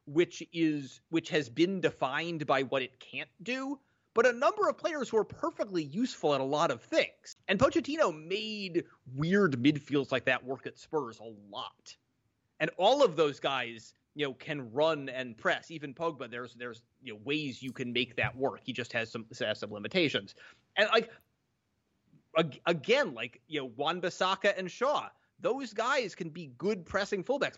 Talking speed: 185 wpm